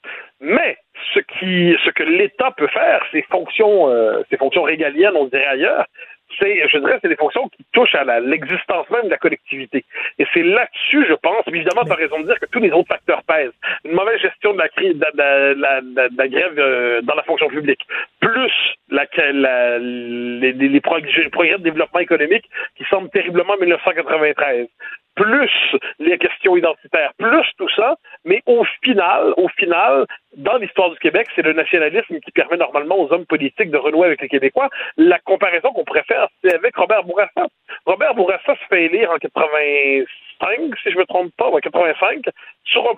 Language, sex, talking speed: French, male, 195 wpm